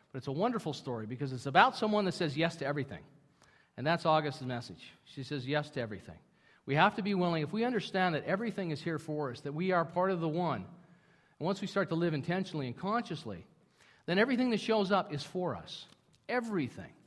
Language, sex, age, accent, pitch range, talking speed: English, male, 50-69, American, 120-155 Hz, 220 wpm